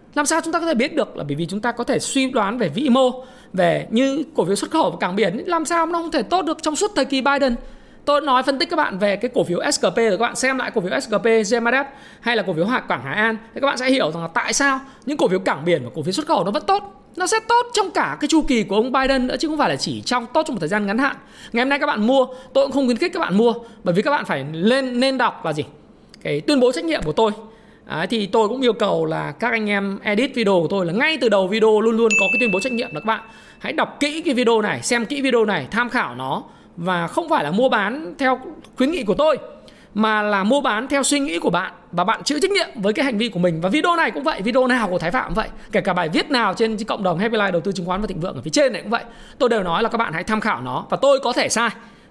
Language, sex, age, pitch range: Vietnamese, male, 20-39, 215-280 Hz